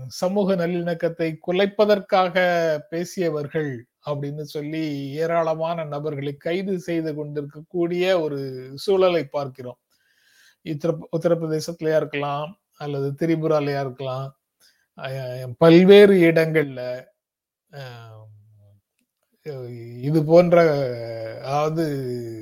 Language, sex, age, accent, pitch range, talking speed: Tamil, male, 30-49, native, 135-170 Hz, 65 wpm